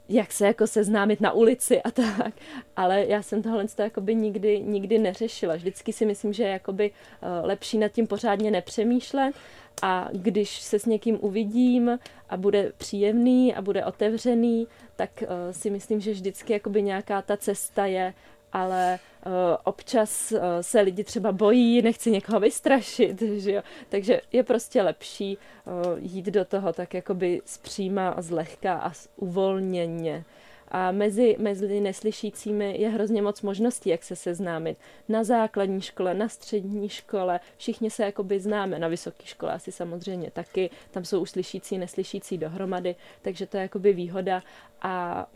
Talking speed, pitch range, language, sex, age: 145 wpm, 185-220 Hz, Czech, female, 20-39